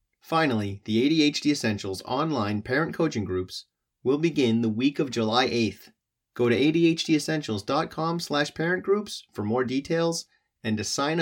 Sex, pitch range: male, 105-145 Hz